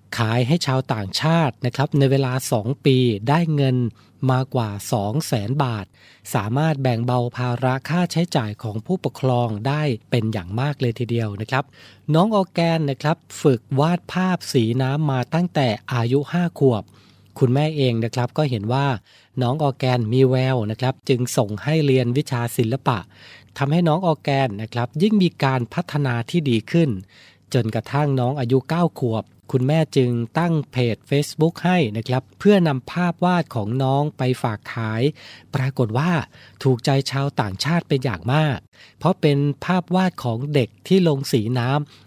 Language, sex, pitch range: Thai, male, 120-150 Hz